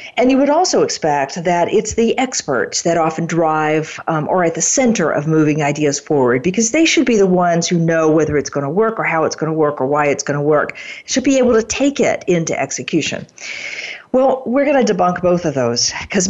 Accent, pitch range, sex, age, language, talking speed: American, 155-215 Hz, female, 50-69, English, 220 wpm